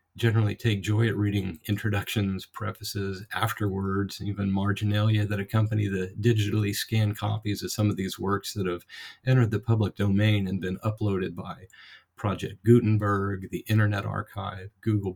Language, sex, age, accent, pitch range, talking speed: English, male, 40-59, American, 95-110 Hz, 145 wpm